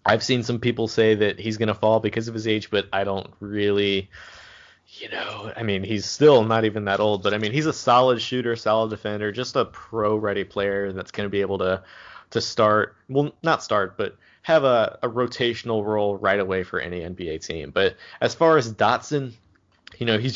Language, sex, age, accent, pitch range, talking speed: English, male, 30-49, American, 100-115 Hz, 215 wpm